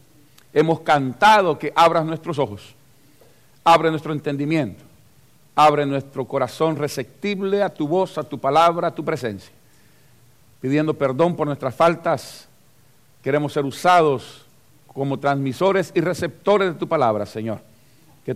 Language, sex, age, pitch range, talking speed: Spanish, male, 50-69, 125-155 Hz, 130 wpm